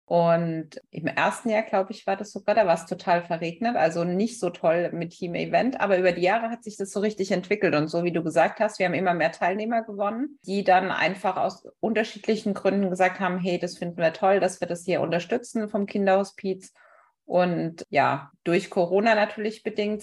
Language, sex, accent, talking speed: German, female, German, 205 wpm